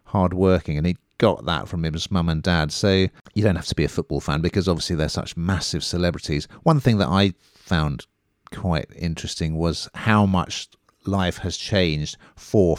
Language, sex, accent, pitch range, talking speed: English, male, British, 80-105 Hz, 190 wpm